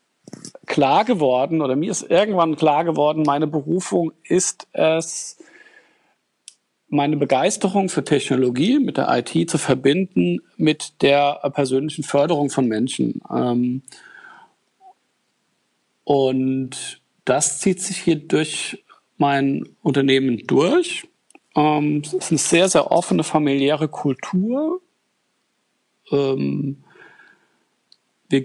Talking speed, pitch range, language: 95 wpm, 140-175 Hz, German